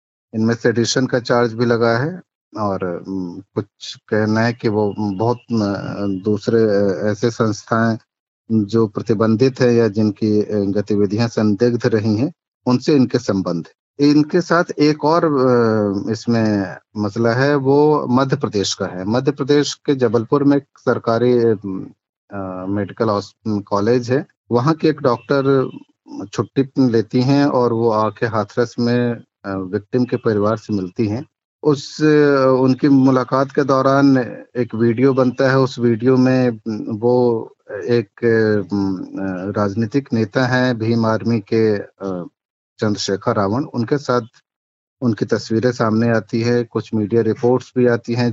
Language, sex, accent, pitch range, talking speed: Hindi, male, native, 105-130 Hz, 115 wpm